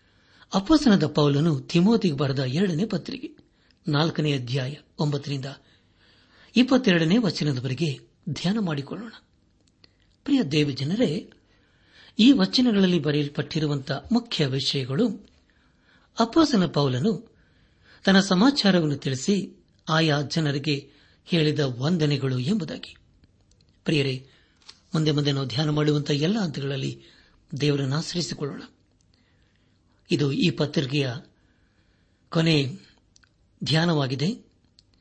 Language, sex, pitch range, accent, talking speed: Kannada, male, 135-170 Hz, native, 70 wpm